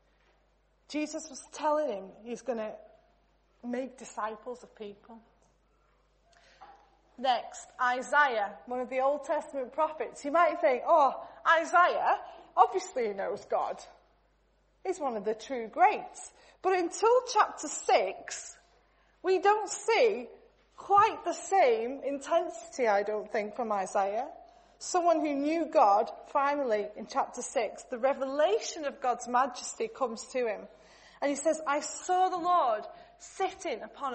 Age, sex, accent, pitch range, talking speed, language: 30-49, female, British, 230-335 Hz, 130 wpm, English